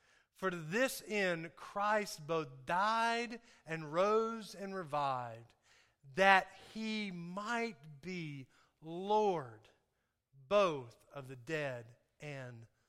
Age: 40-59